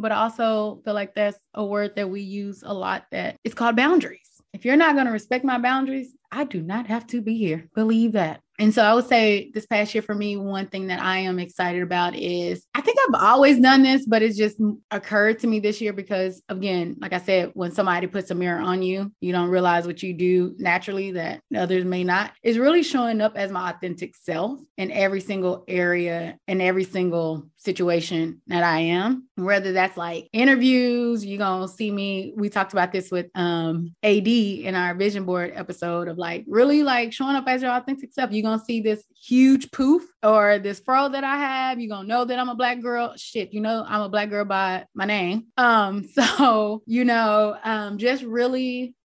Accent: American